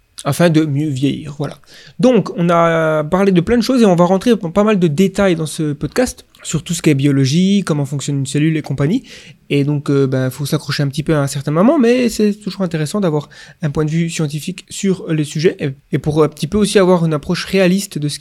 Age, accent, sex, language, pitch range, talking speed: 20-39, French, male, French, 150-195 Hz, 245 wpm